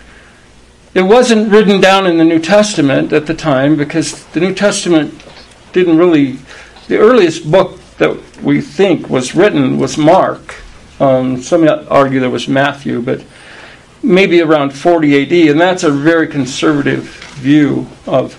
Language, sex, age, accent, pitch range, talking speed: English, male, 60-79, American, 140-185 Hz, 145 wpm